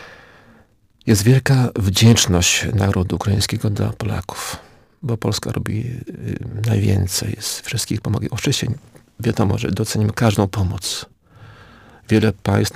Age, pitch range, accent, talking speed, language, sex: 40-59, 100-115 Hz, native, 110 wpm, Polish, male